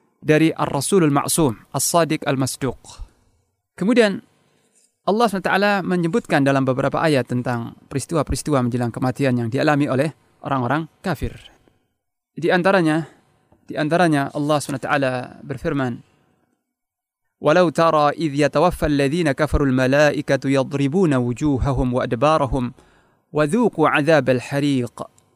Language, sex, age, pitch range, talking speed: Indonesian, male, 30-49, 130-170 Hz, 105 wpm